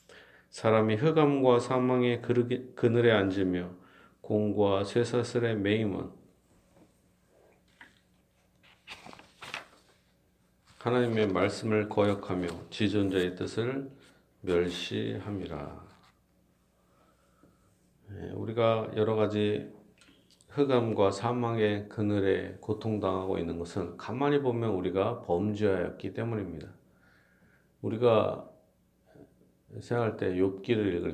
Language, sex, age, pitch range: Korean, male, 40-59, 95-120 Hz